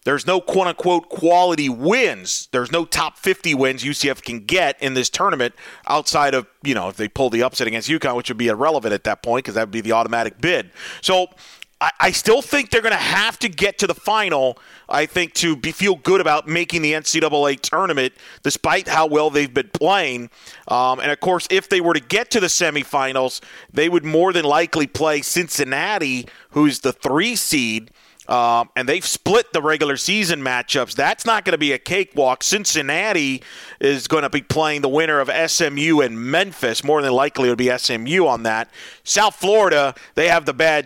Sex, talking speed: male, 200 wpm